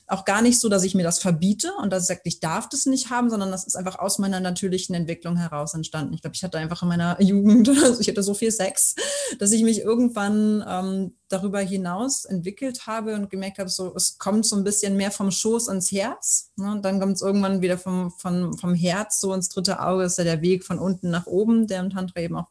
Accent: German